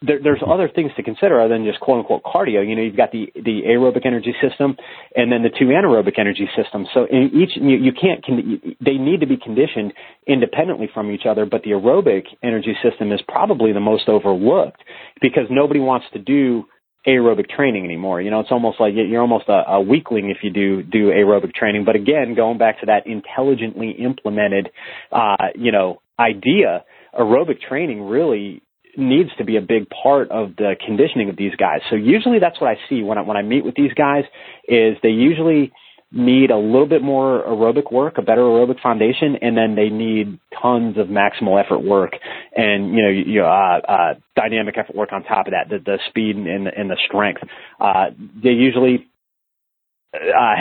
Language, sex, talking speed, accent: English, male, 195 wpm, American